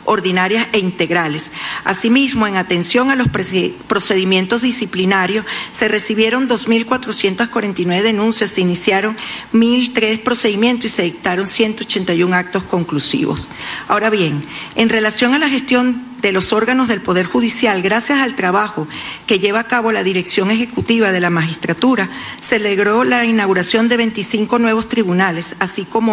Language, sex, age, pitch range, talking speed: Spanish, female, 40-59, 185-230 Hz, 135 wpm